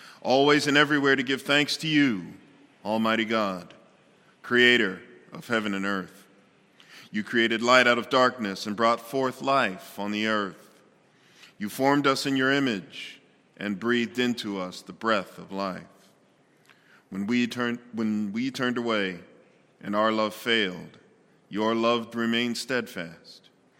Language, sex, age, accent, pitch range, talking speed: English, male, 40-59, American, 105-125 Hz, 145 wpm